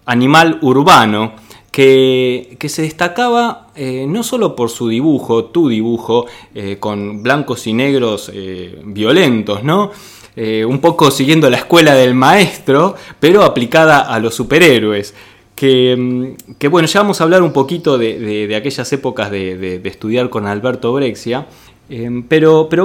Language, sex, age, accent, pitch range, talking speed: Spanish, male, 20-39, Argentinian, 115-145 Hz, 155 wpm